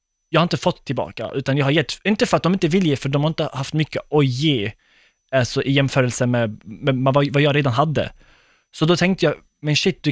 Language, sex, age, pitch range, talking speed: Swedish, male, 20-39, 135-165 Hz, 245 wpm